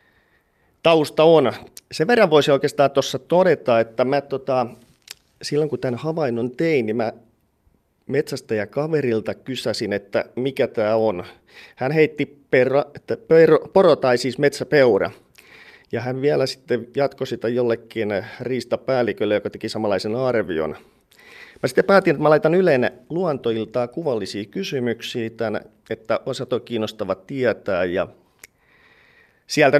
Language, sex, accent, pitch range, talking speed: Finnish, male, native, 110-145 Hz, 125 wpm